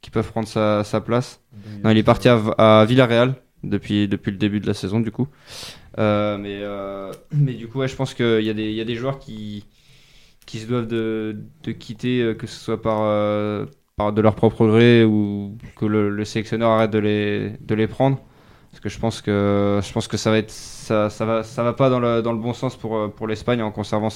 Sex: male